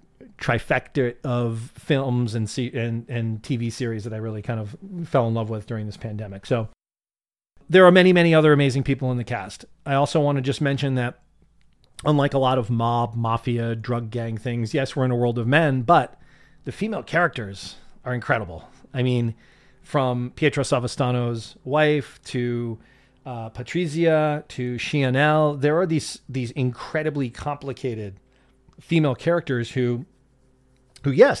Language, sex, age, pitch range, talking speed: English, male, 40-59, 120-140 Hz, 155 wpm